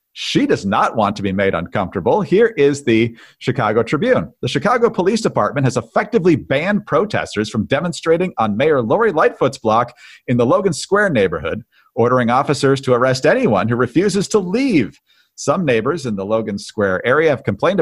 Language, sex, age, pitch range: English, male, 40-59, 120-170 Hz